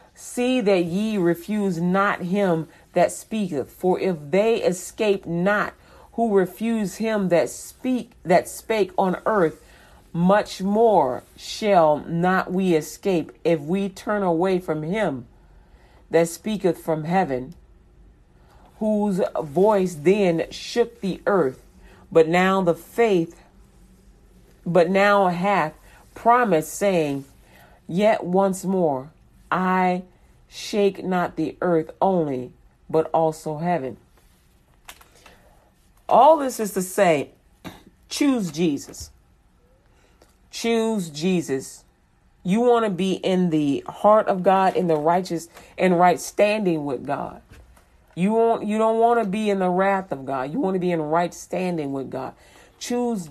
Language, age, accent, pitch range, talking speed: English, 40-59, American, 160-200 Hz, 125 wpm